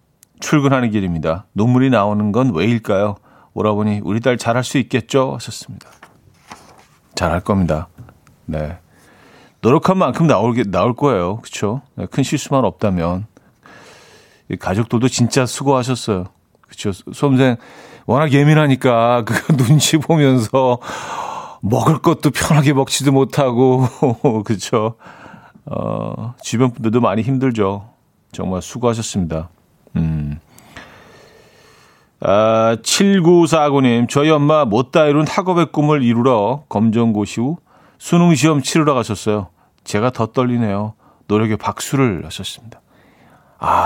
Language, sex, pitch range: Korean, male, 105-140 Hz